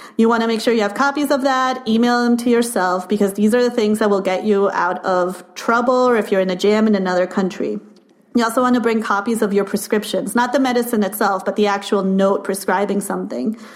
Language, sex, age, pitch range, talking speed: English, female, 30-49, 200-245 Hz, 235 wpm